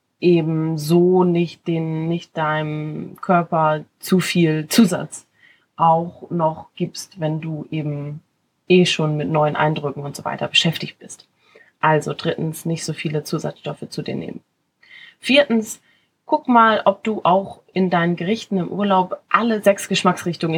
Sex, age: female, 20-39